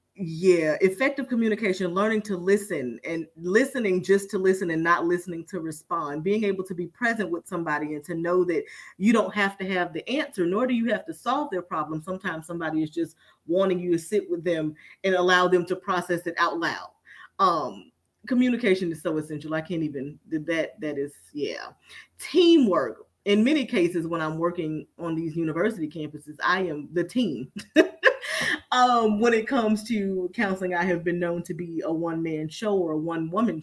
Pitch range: 160-195 Hz